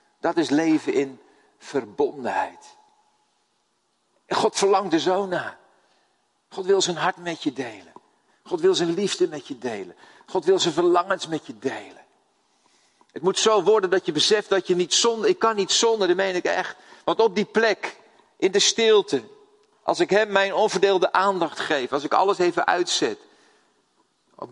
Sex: male